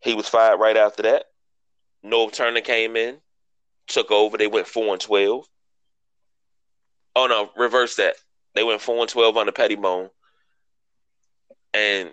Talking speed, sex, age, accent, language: 135 wpm, male, 20-39, American, English